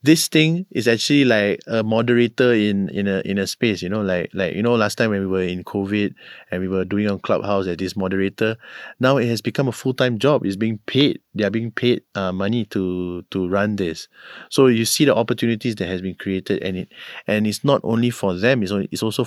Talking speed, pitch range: 240 wpm, 100-120 Hz